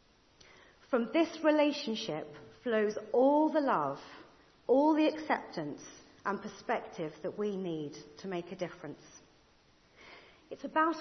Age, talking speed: 40-59, 115 wpm